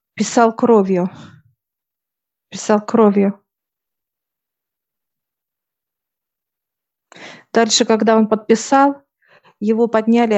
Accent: native